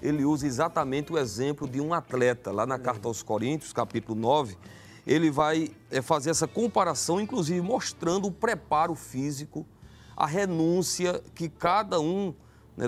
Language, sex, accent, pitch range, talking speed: Portuguese, male, Brazilian, 130-170 Hz, 145 wpm